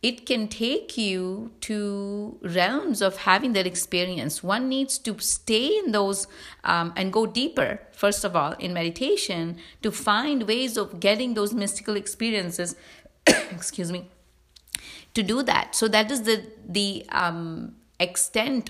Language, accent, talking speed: English, Indian, 145 wpm